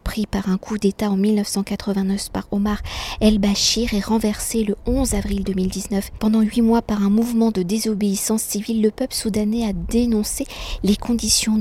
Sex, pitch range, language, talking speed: female, 195-220 Hz, French, 165 wpm